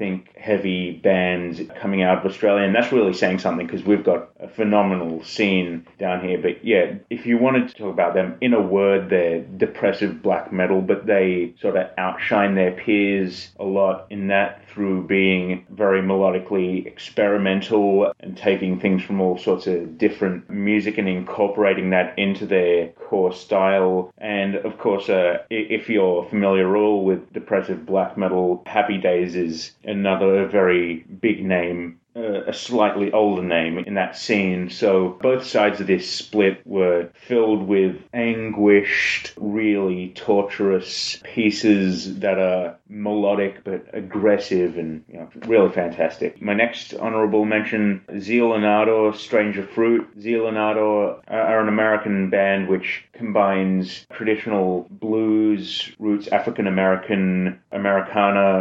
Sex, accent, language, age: male, Australian, English, 30-49